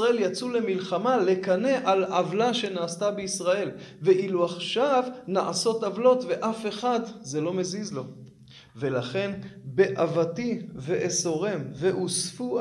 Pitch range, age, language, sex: 165-210 Hz, 20-39, Hebrew, male